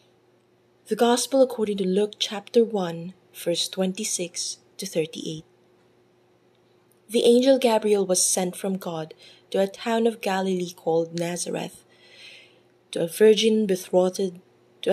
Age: 20-39